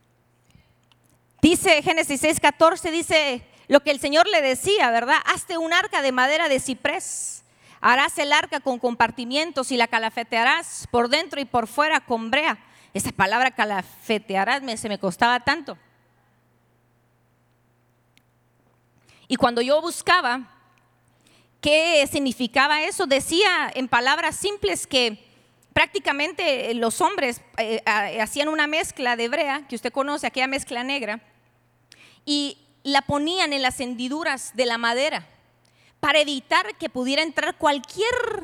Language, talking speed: Spanish, 130 wpm